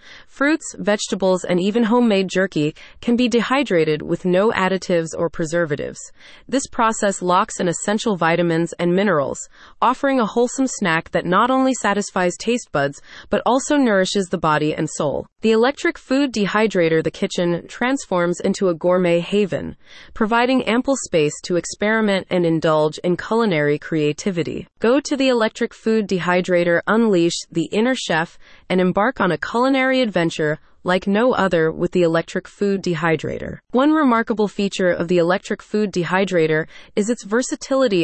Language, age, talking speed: English, 20-39, 150 wpm